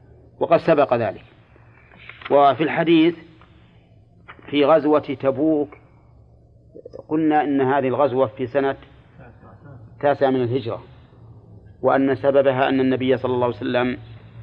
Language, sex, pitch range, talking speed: Arabic, male, 115-140 Hz, 105 wpm